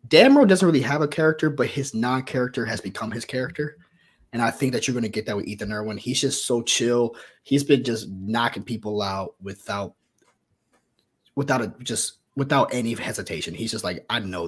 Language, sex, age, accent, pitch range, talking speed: English, male, 20-39, American, 105-135 Hz, 195 wpm